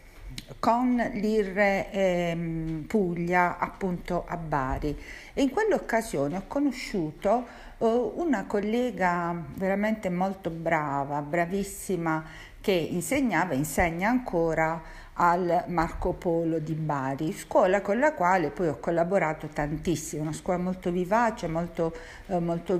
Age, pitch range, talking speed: 50-69, 155-200 Hz, 115 wpm